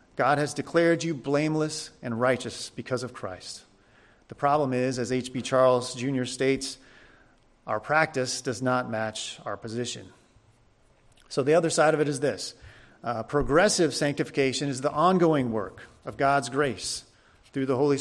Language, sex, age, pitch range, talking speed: English, male, 40-59, 125-145 Hz, 155 wpm